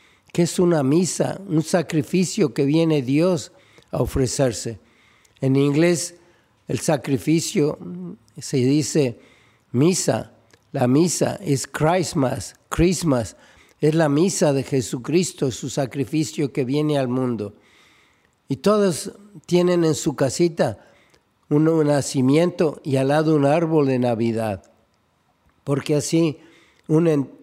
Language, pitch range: Spanish, 135-160 Hz